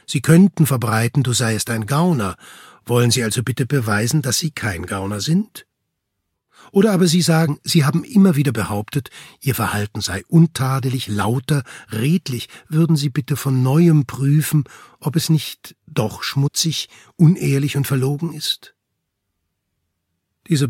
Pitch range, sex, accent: 105-145 Hz, male, German